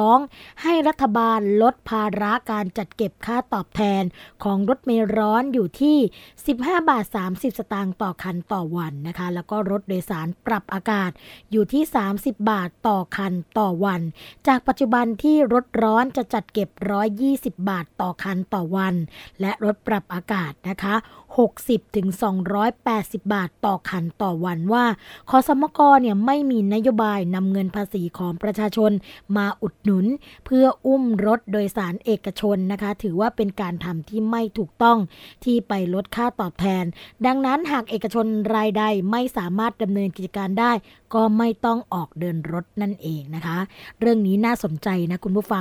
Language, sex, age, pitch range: Thai, female, 20-39, 190-230 Hz